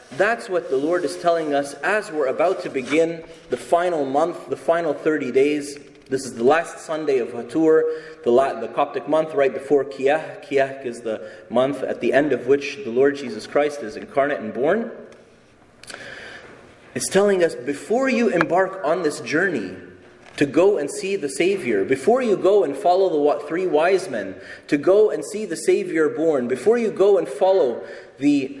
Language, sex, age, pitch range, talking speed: English, male, 30-49, 145-235 Hz, 185 wpm